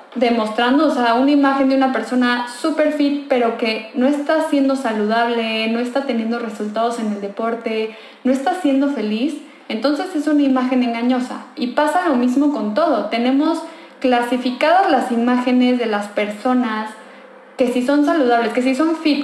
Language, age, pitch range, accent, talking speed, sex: Spanish, 10-29, 235-285 Hz, Mexican, 165 wpm, female